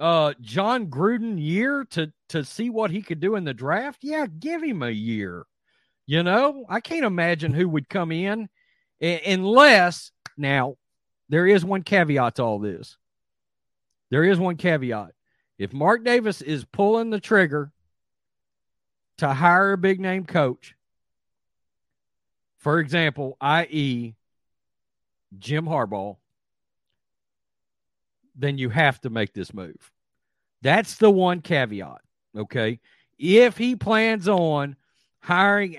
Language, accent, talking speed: English, American, 125 wpm